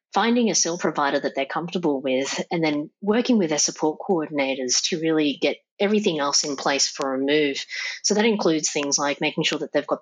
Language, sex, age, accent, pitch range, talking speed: English, female, 30-49, Australian, 145-170 Hz, 210 wpm